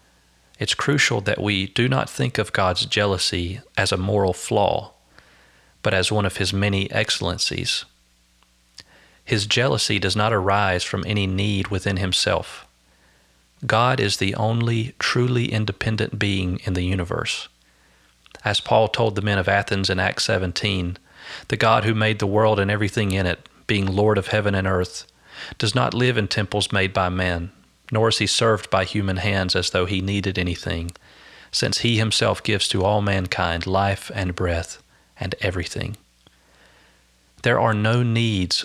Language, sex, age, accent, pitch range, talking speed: English, male, 40-59, American, 90-110 Hz, 160 wpm